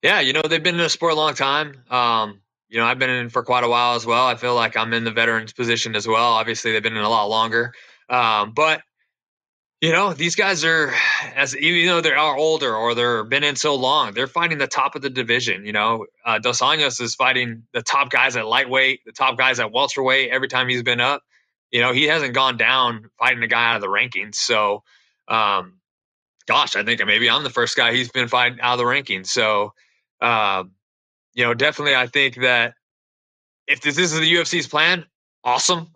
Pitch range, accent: 115-145 Hz, American